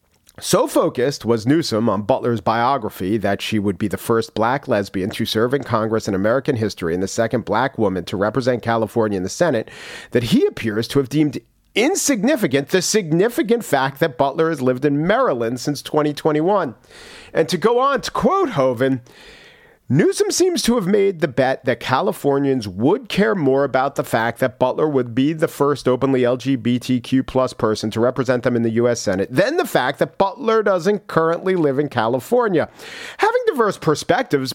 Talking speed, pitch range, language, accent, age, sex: 175 wpm, 115-160 Hz, English, American, 40-59, male